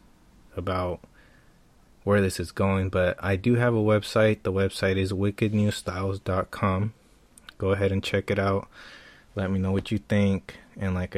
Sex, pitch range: male, 90-100 Hz